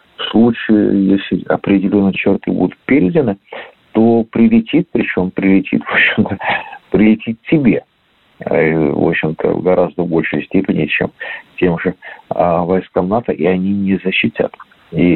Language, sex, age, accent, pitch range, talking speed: Russian, male, 50-69, native, 80-105 Hz, 125 wpm